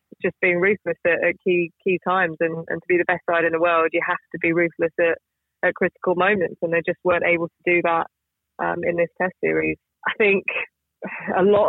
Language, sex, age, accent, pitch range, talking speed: English, female, 20-39, British, 170-195 Hz, 220 wpm